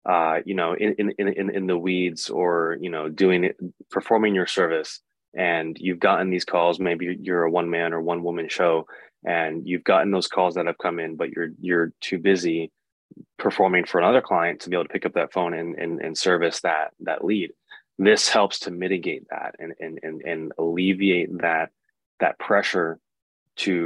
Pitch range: 85-95 Hz